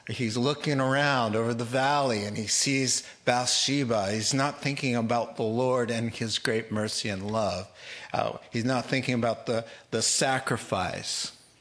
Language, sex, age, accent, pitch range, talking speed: English, male, 50-69, American, 110-135 Hz, 155 wpm